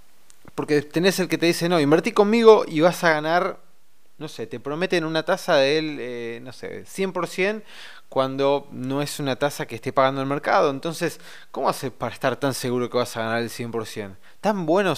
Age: 20-39